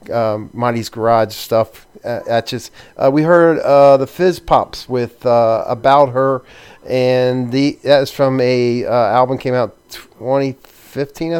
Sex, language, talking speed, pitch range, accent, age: male, English, 145 wpm, 115-135 Hz, American, 40-59